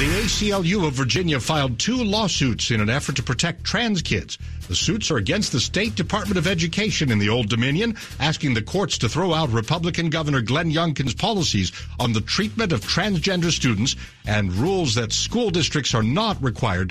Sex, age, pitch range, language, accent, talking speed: male, 60-79, 115-170 Hz, English, American, 185 wpm